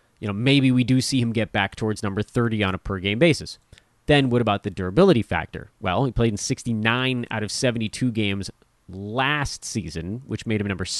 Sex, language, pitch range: male, English, 100-130 Hz